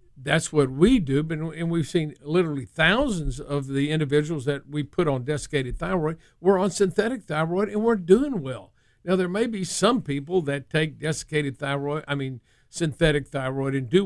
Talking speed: 180 wpm